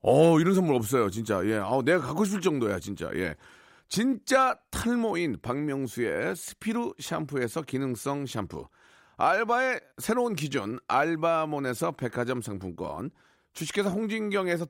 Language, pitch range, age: Korean, 150-205 Hz, 40-59